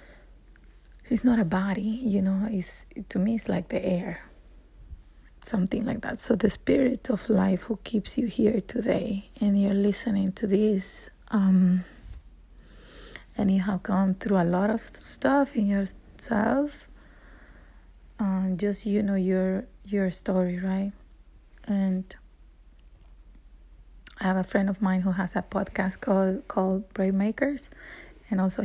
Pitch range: 185-215 Hz